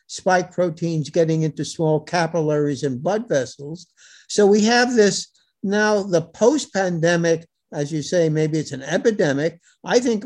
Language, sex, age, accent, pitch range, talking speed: English, male, 60-79, American, 165-215 Hz, 150 wpm